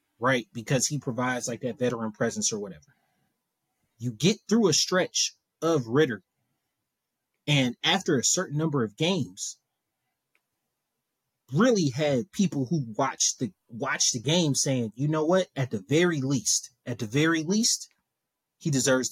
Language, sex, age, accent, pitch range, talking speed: English, male, 30-49, American, 125-160 Hz, 150 wpm